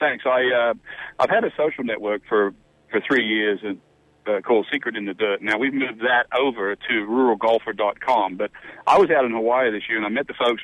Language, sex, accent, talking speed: English, male, American, 220 wpm